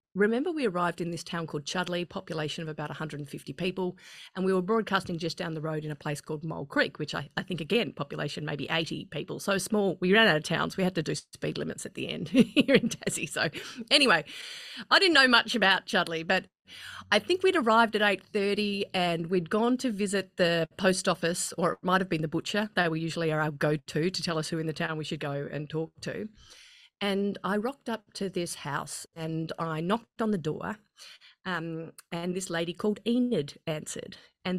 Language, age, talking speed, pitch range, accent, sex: English, 30-49, 215 wpm, 170-235 Hz, Australian, female